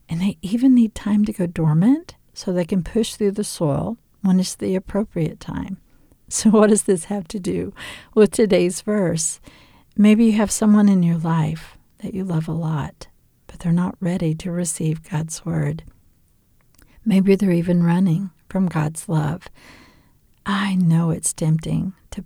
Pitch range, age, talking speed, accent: 170-225 Hz, 50-69, 165 wpm, American